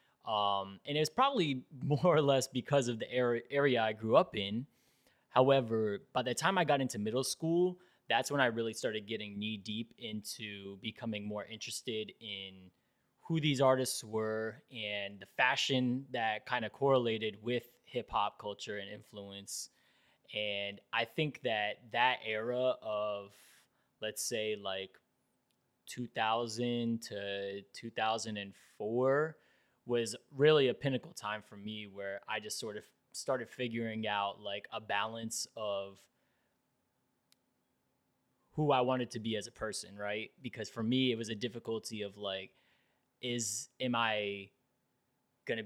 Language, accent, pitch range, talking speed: English, American, 105-130 Hz, 140 wpm